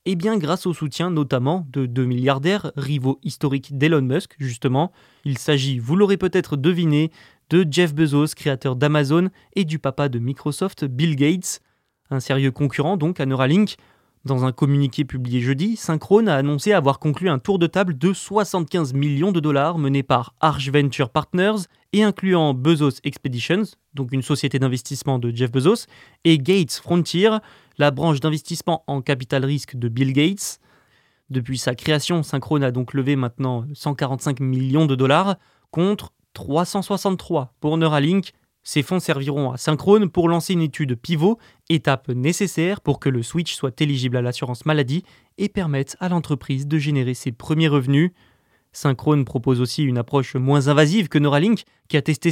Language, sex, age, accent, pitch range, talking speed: French, male, 20-39, French, 135-170 Hz, 165 wpm